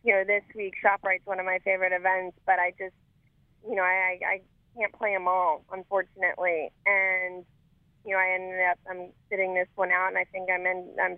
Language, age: English, 20-39